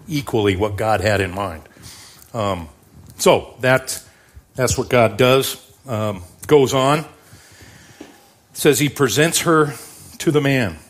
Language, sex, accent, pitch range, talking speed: English, male, American, 100-130 Hz, 125 wpm